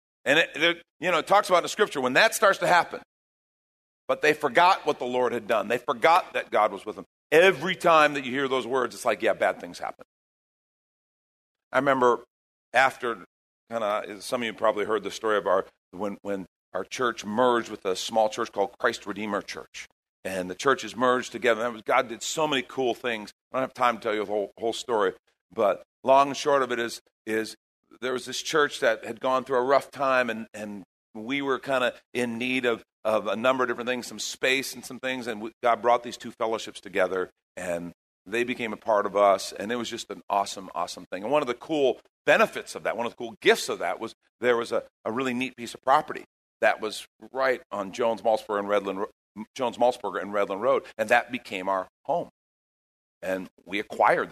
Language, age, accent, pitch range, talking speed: English, 50-69, American, 105-130 Hz, 220 wpm